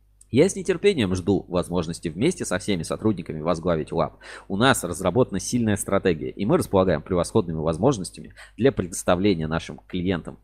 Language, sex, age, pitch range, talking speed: Russian, male, 20-39, 85-110 Hz, 145 wpm